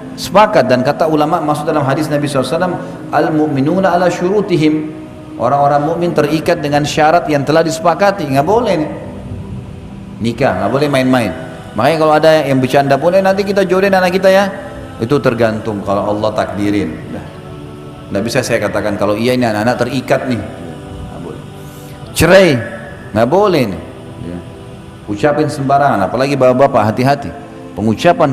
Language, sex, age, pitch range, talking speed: Indonesian, male, 40-59, 120-165 Hz, 135 wpm